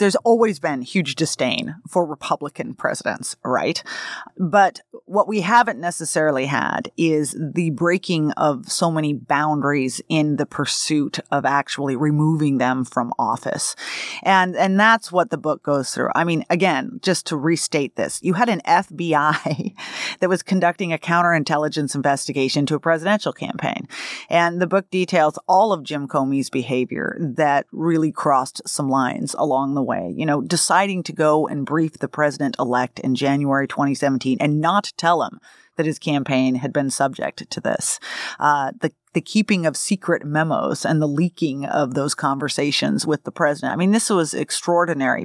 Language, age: English, 30-49